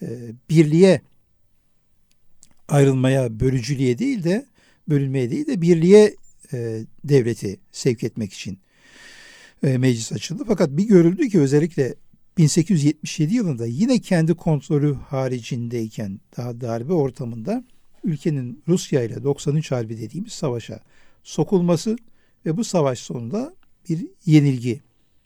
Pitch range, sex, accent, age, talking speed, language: 125-185 Hz, male, native, 60-79, 100 wpm, Turkish